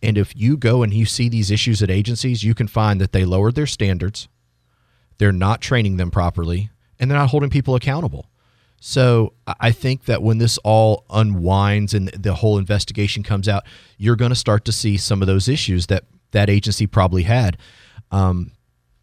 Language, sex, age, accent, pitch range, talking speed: English, male, 30-49, American, 95-120 Hz, 190 wpm